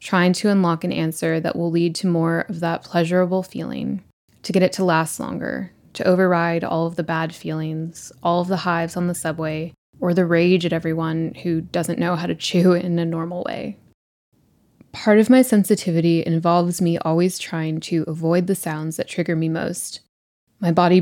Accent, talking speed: American, 190 wpm